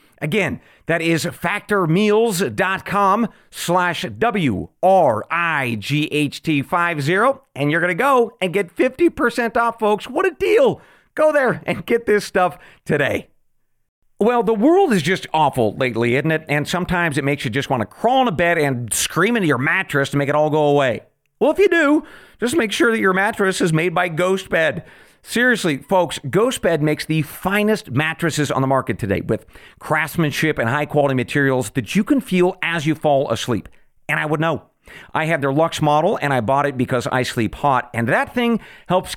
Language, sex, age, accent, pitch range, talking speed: English, male, 40-59, American, 145-195 Hz, 180 wpm